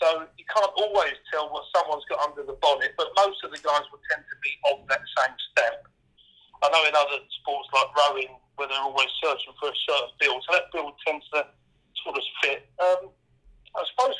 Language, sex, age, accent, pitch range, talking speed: English, male, 50-69, British, 145-210 Hz, 210 wpm